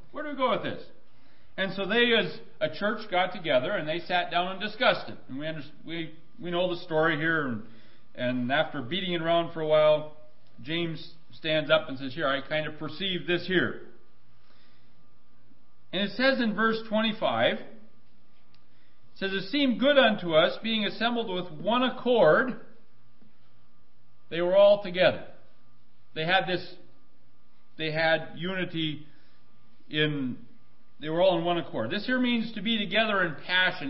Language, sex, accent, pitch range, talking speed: English, male, American, 140-200 Hz, 170 wpm